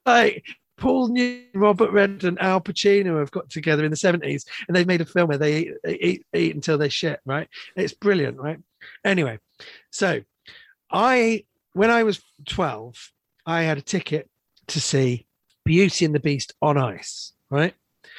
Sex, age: male, 40-59